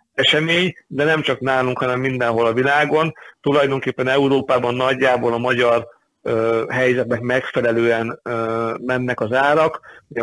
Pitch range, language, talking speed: 120-130 Hz, Hungarian, 115 wpm